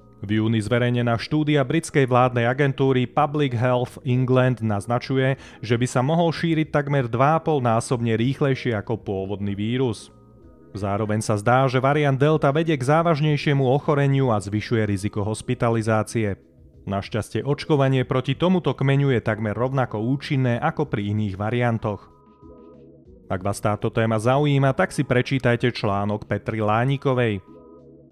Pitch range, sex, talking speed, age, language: 110-145 Hz, male, 130 wpm, 30-49, Slovak